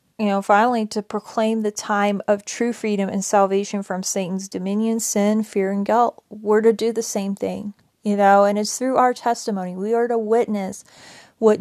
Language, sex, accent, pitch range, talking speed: English, female, American, 200-225 Hz, 190 wpm